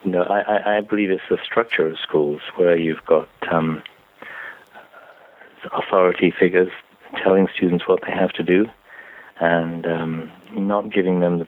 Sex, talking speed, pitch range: male, 145 wpm, 85-95 Hz